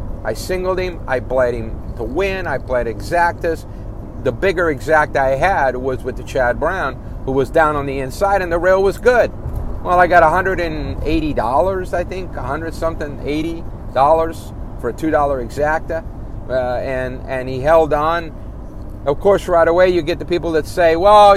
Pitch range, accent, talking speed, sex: 120-165 Hz, American, 175 wpm, male